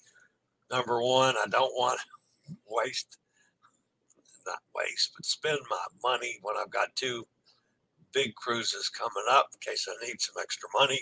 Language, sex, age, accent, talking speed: English, male, 60-79, American, 150 wpm